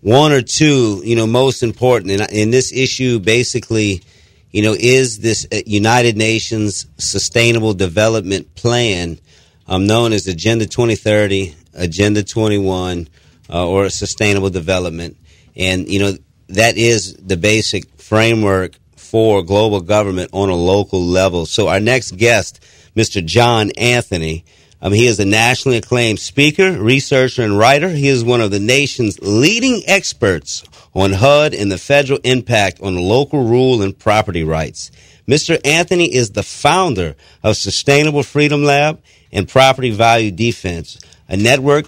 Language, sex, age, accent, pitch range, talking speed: English, male, 40-59, American, 95-125 Hz, 140 wpm